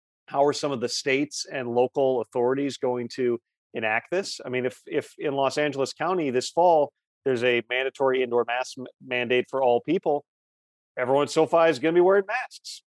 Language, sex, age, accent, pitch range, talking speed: English, male, 40-59, American, 125-150 Hz, 190 wpm